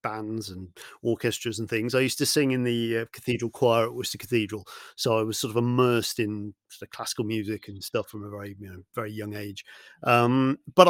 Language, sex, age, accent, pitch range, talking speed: English, male, 40-59, British, 105-125 Hz, 220 wpm